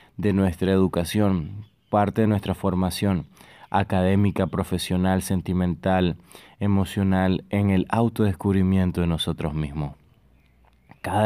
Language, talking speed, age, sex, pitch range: Spanish, 95 wpm, 30-49, male, 90-105 Hz